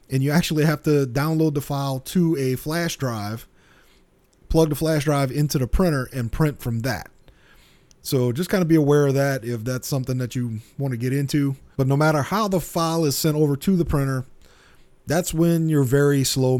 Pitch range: 125-155 Hz